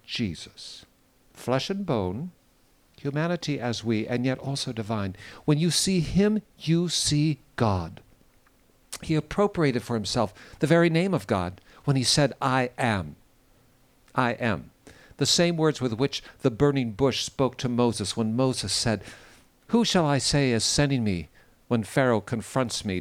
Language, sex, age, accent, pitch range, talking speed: English, male, 60-79, American, 110-140 Hz, 155 wpm